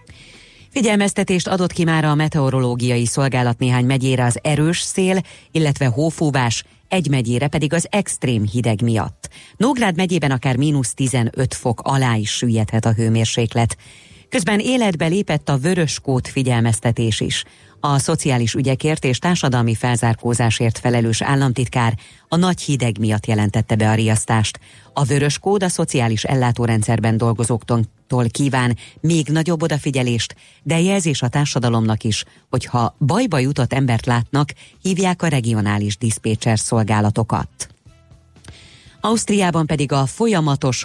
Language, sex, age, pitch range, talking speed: Hungarian, female, 30-49, 115-150 Hz, 130 wpm